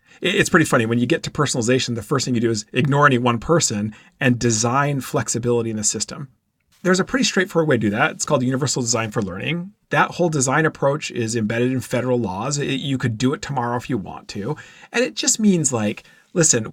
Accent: American